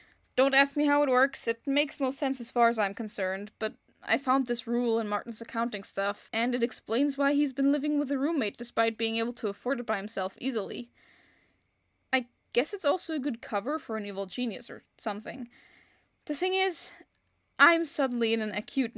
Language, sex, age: English, female, 10-29